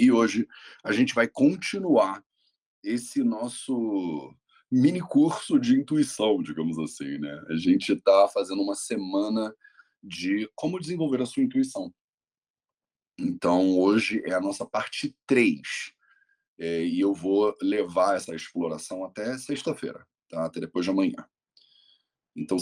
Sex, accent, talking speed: male, Brazilian, 130 wpm